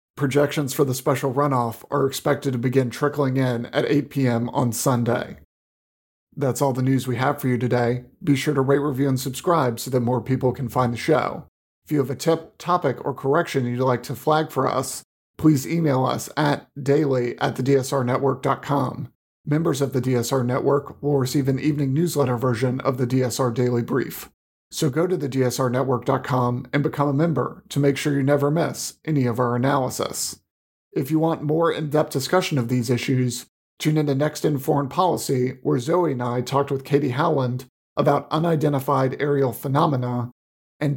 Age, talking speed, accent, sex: 40-59, 180 wpm, American, male